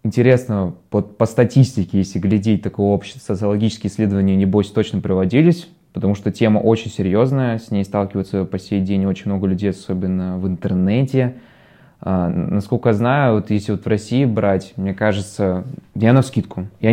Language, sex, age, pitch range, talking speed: Russian, male, 20-39, 100-120 Hz, 165 wpm